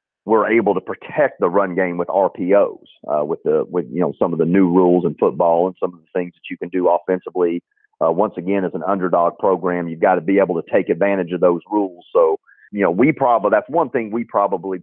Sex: male